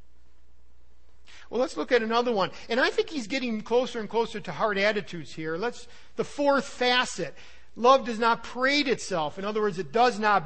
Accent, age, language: American, 50-69, English